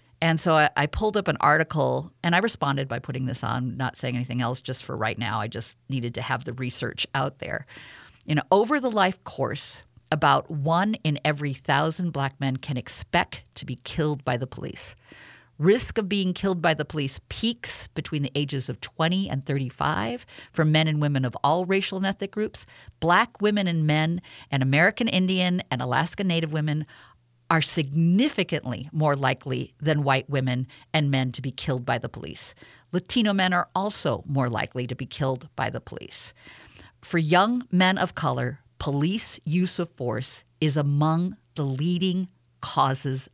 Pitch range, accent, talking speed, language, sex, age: 130-185 Hz, American, 175 wpm, English, female, 50-69